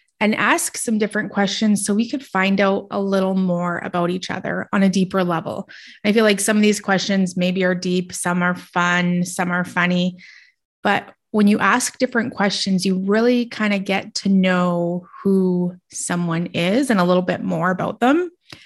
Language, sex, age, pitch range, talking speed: English, female, 20-39, 180-210 Hz, 190 wpm